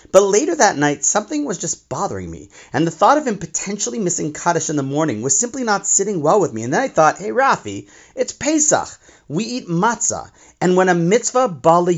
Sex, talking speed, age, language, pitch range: male, 215 wpm, 30-49, English, 120-195 Hz